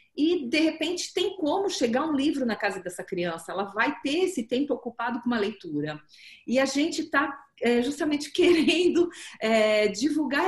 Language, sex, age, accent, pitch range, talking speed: Portuguese, female, 40-59, Brazilian, 220-295 Hz, 170 wpm